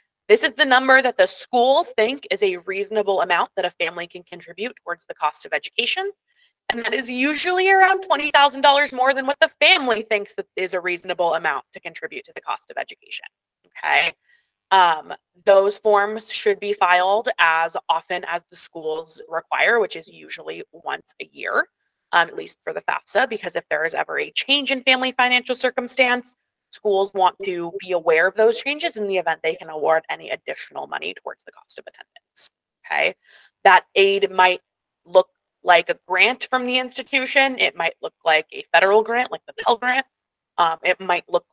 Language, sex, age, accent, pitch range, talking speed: English, female, 20-39, American, 180-300 Hz, 190 wpm